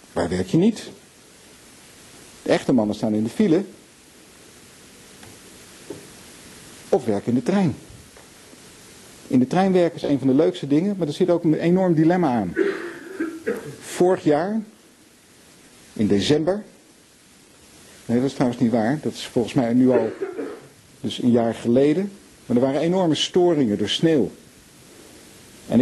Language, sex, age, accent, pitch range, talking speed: Dutch, male, 50-69, Dutch, 120-180 Hz, 145 wpm